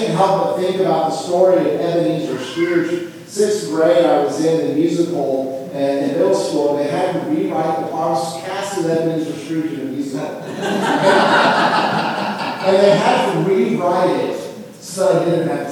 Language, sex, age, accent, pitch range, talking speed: English, male, 40-59, American, 170-245 Hz, 170 wpm